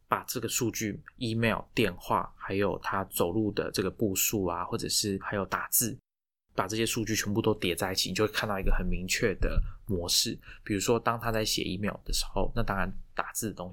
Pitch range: 95-110 Hz